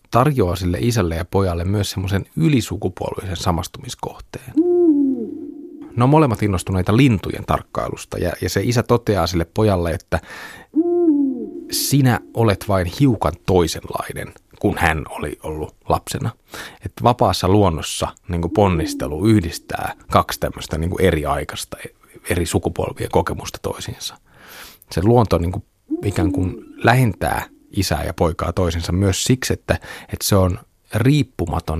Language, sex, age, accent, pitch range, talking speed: Finnish, male, 30-49, native, 85-115 Hz, 125 wpm